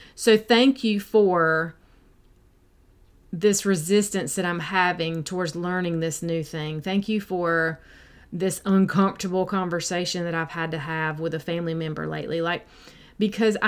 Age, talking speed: 30-49, 140 wpm